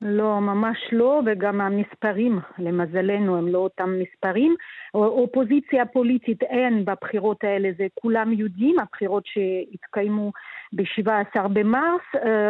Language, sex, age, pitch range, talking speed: Hebrew, female, 40-59, 205-255 Hz, 105 wpm